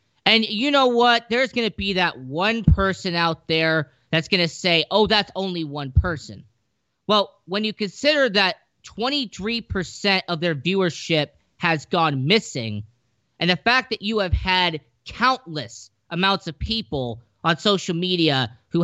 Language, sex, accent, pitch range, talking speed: English, male, American, 135-195 Hz, 155 wpm